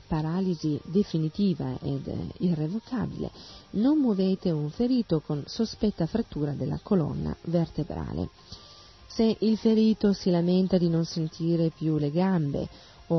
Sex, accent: female, native